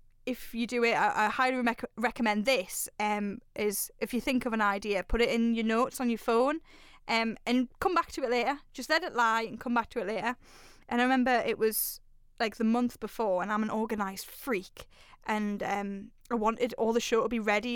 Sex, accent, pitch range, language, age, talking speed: female, British, 225-300 Hz, English, 10-29, 225 wpm